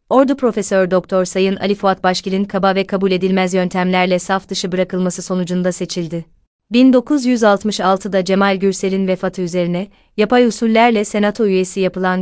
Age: 30-49